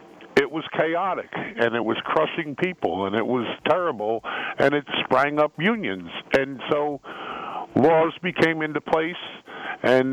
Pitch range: 115-145 Hz